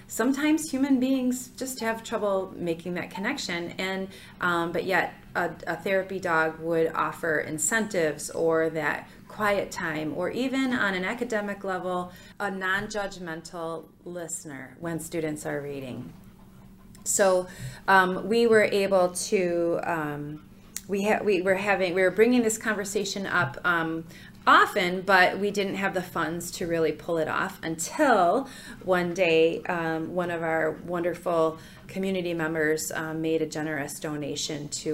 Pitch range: 165-205 Hz